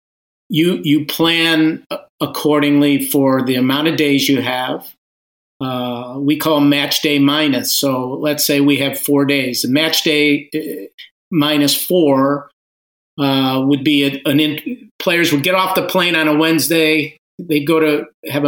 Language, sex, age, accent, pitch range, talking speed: English, male, 50-69, American, 140-155 Hz, 155 wpm